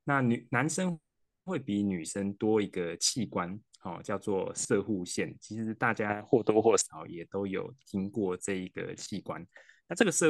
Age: 20-39